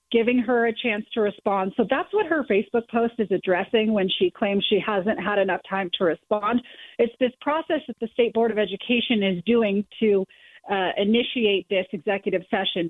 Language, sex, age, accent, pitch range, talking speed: English, female, 40-59, American, 200-235 Hz, 190 wpm